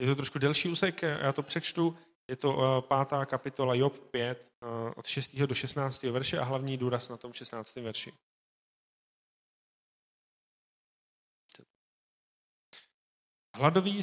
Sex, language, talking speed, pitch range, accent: male, Czech, 115 wpm, 120-140 Hz, native